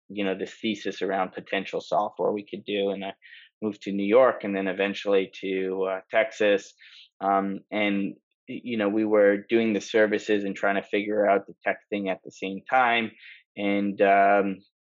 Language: English